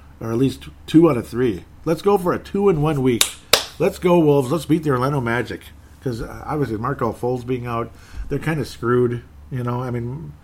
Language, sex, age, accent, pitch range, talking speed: English, male, 40-59, American, 100-150 Hz, 200 wpm